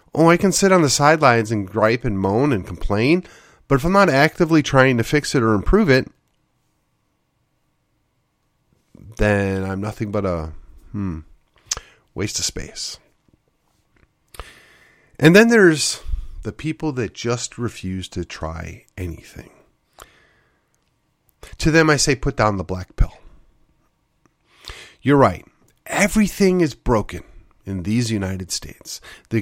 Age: 40-59